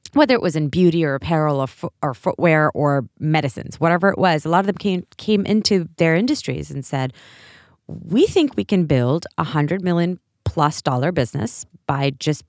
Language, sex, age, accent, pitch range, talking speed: English, female, 20-39, American, 145-190 Hz, 190 wpm